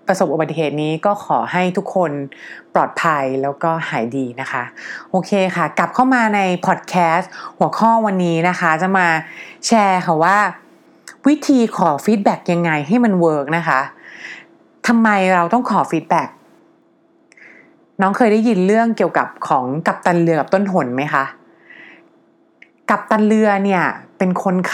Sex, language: female, English